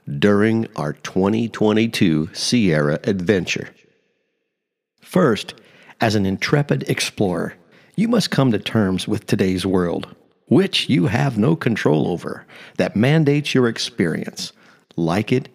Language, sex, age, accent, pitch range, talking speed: English, male, 50-69, American, 95-140 Hz, 115 wpm